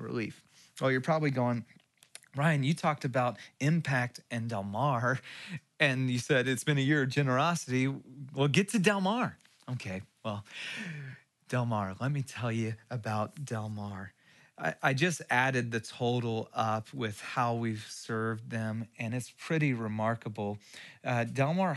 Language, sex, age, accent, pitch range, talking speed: English, male, 30-49, American, 115-150 Hz, 150 wpm